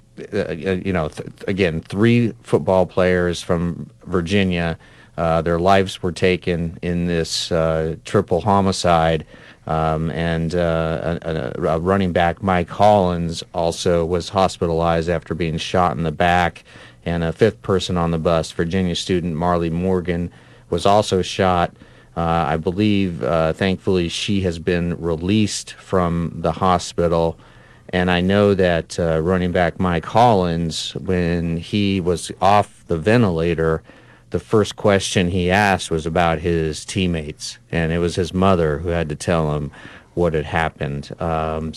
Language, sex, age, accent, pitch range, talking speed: English, male, 30-49, American, 85-100 Hz, 145 wpm